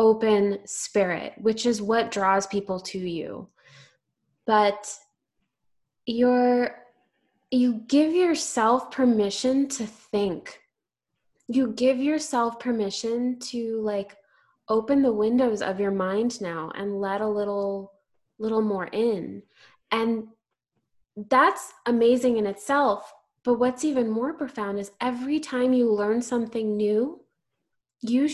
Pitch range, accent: 210-255 Hz, American